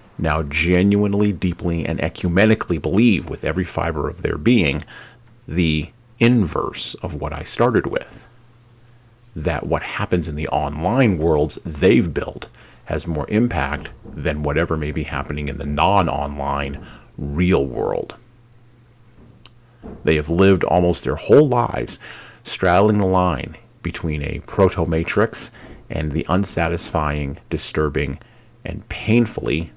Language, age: English, 40-59